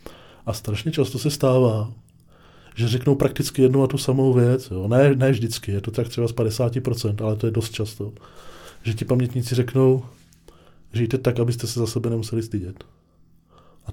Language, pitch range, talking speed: Czech, 110-125 Hz, 175 wpm